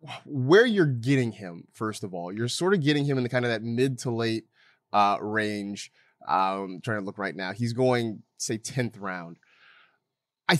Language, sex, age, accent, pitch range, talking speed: English, male, 30-49, American, 110-160 Hz, 195 wpm